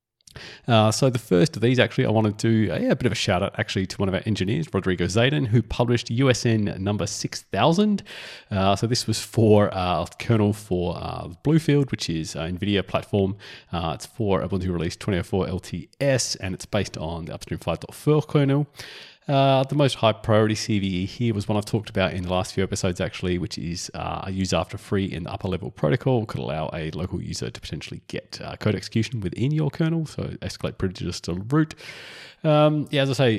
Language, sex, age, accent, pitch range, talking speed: English, male, 30-49, Australian, 95-135 Hz, 210 wpm